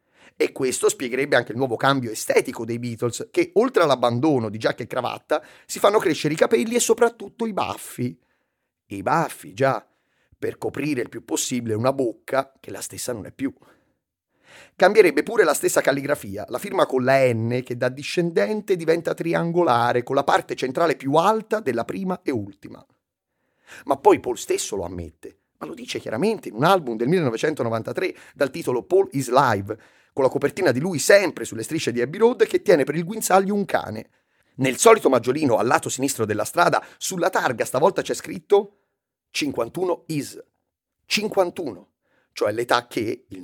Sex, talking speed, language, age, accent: male, 175 wpm, Italian, 30-49, native